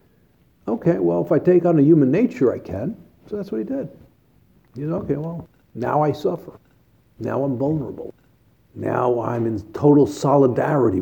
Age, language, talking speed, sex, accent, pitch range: 60-79, English, 170 wpm, male, American, 115-160 Hz